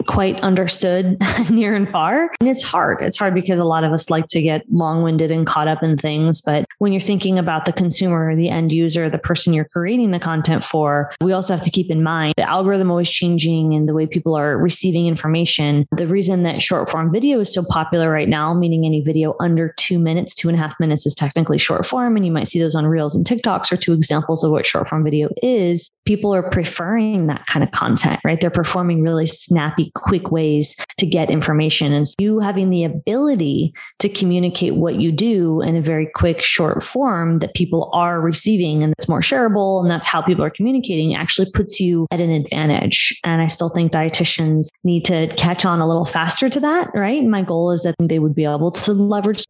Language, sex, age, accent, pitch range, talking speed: English, female, 20-39, American, 160-185 Hz, 215 wpm